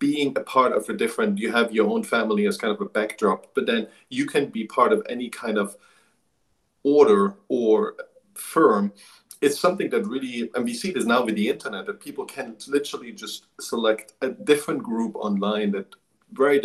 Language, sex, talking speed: English, male, 190 wpm